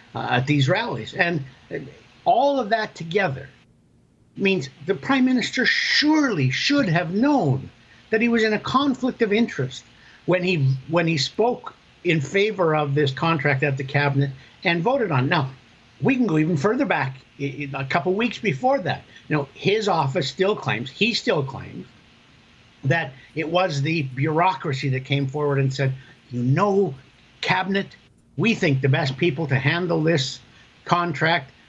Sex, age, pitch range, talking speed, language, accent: male, 60-79, 135-185 Hz, 165 wpm, English, American